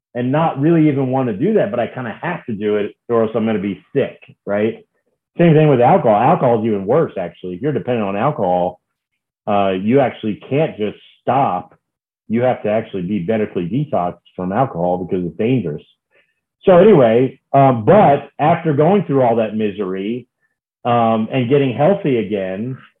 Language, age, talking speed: English, 40-59, 185 wpm